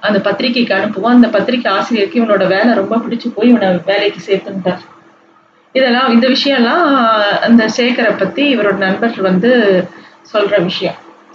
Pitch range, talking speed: 195-255 Hz, 135 wpm